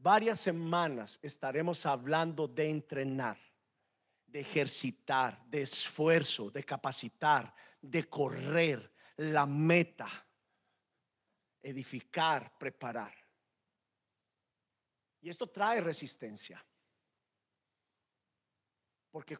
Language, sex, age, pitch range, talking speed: Spanish, male, 50-69, 130-165 Hz, 70 wpm